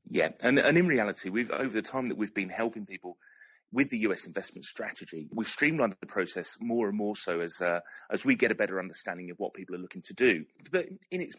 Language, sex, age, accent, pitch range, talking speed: English, male, 30-49, British, 95-120 Hz, 235 wpm